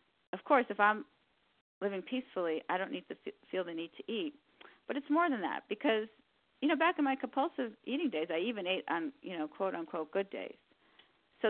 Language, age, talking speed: English, 40-59, 215 wpm